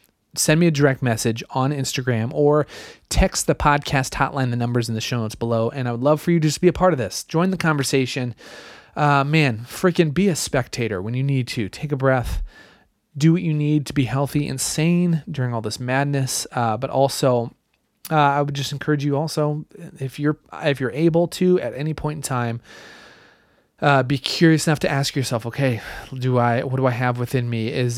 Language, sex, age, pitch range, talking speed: English, male, 30-49, 115-150 Hz, 210 wpm